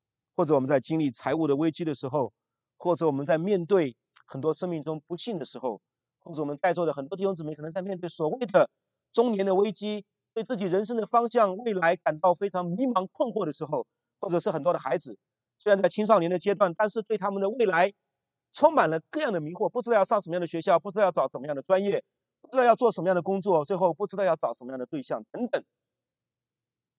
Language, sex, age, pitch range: English, male, 30-49, 140-200 Hz